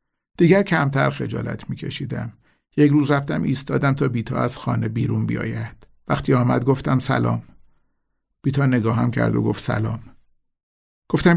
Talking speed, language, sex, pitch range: 130 wpm, Persian, male, 115-140 Hz